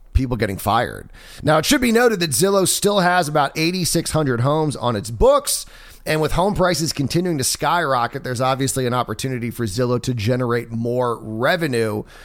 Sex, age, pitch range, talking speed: male, 30-49, 120-170 Hz, 180 wpm